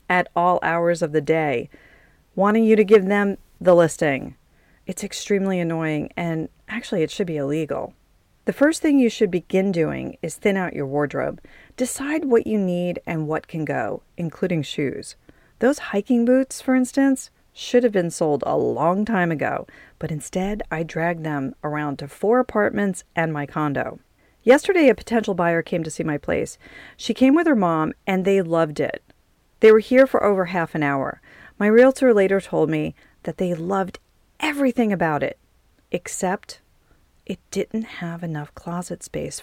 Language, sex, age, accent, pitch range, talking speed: English, female, 40-59, American, 165-245 Hz, 170 wpm